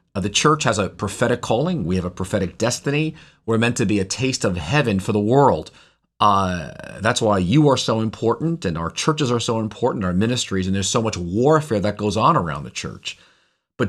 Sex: male